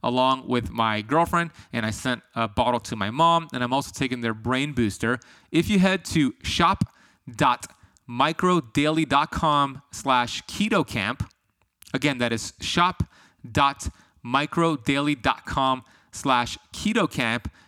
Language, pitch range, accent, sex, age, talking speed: English, 115-145 Hz, American, male, 30-49, 110 wpm